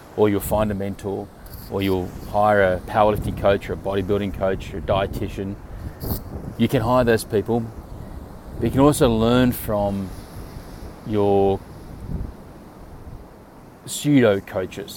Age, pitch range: 30-49, 100-110 Hz